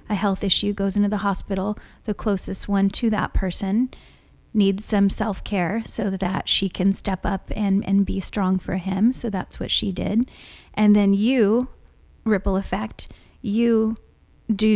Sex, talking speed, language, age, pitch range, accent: female, 165 wpm, English, 30-49, 190-215 Hz, American